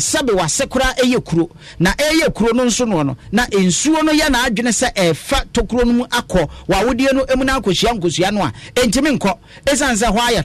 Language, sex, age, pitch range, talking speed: English, male, 50-69, 185-255 Hz, 160 wpm